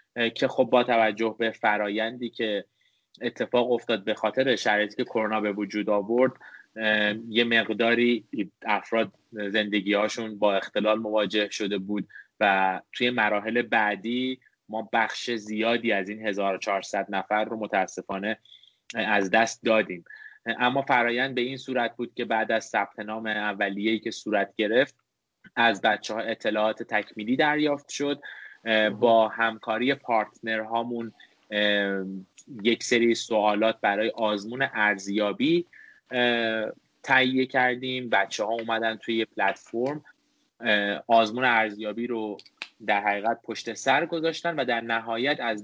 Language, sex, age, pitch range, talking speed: Persian, male, 20-39, 105-120 Hz, 120 wpm